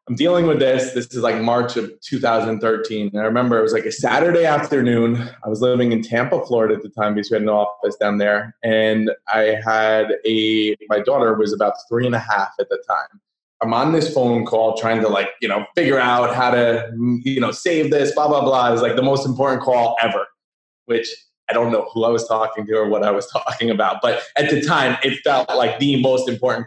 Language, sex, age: English, male, 20-39